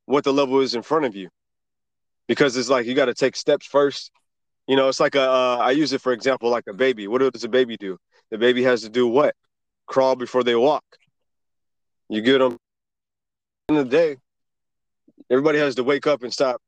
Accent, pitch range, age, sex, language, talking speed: American, 115-145 Hz, 20-39, male, English, 210 wpm